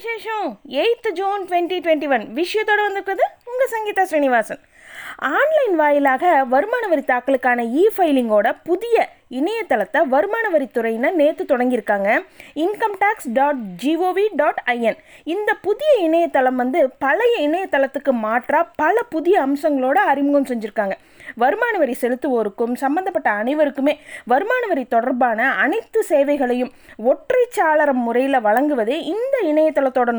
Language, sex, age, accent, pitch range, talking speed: Tamil, female, 20-39, native, 250-340 Hz, 50 wpm